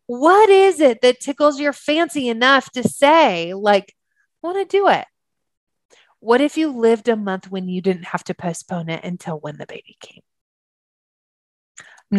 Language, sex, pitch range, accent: English, female, 180-225 Hz, American